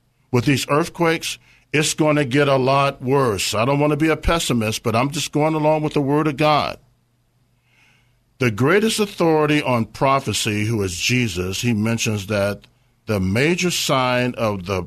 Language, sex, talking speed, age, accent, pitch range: English, male, 175 wpm, 50-69, American, 105-140 Hz